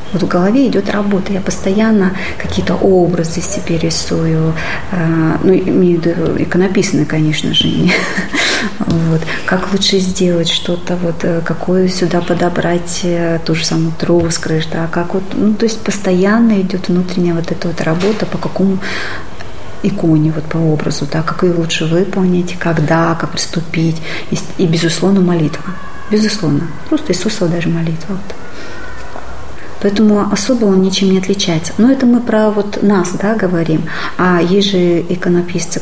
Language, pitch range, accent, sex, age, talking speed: Russian, 165-195 Hz, native, female, 30-49, 130 wpm